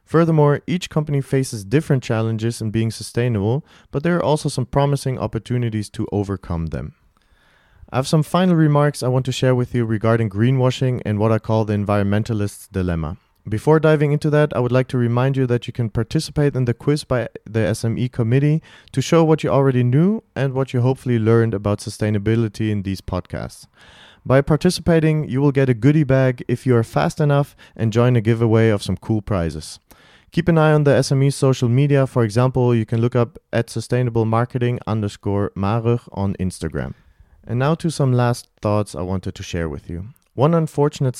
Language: English